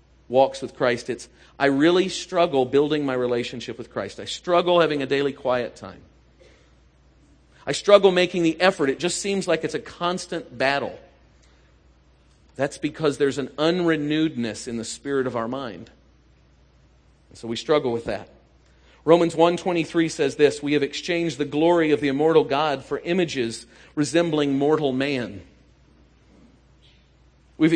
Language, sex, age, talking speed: English, male, 40-59, 145 wpm